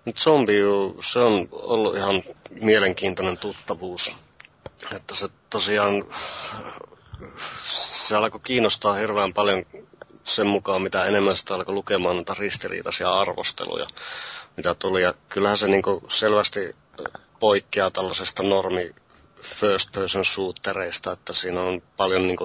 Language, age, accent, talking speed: Finnish, 30-49, native, 110 wpm